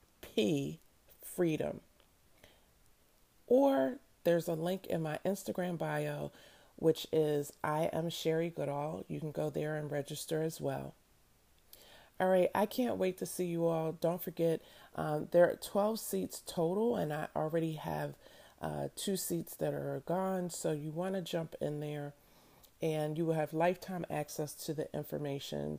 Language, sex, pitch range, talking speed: English, female, 145-175 Hz, 155 wpm